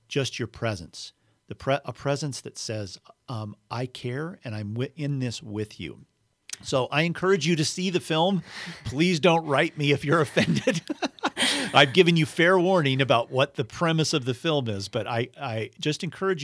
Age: 50-69